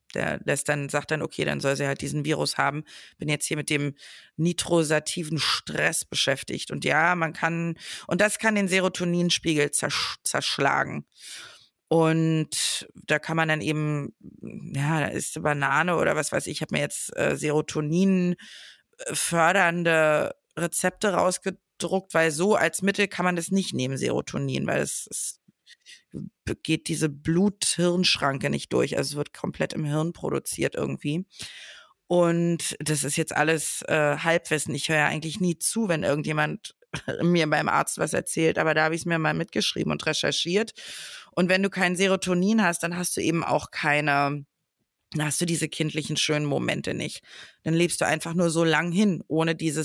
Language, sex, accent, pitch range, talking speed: German, female, German, 150-180 Hz, 170 wpm